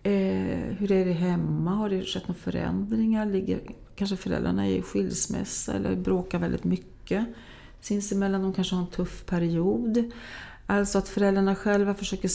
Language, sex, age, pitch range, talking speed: English, female, 40-59, 170-225 Hz, 170 wpm